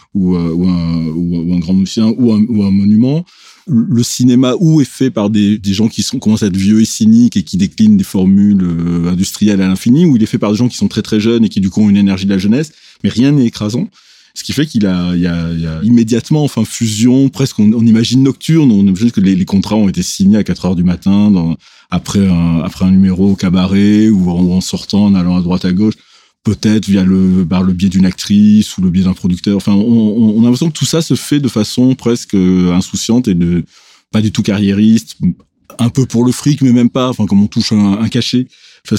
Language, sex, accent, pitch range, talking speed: French, male, French, 95-120 Hz, 250 wpm